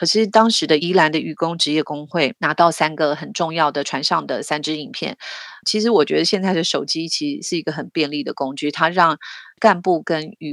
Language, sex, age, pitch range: Chinese, female, 30-49, 150-180 Hz